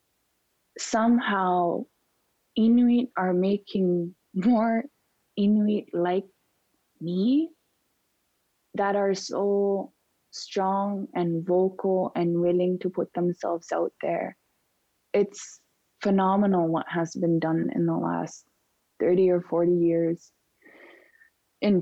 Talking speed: 95 wpm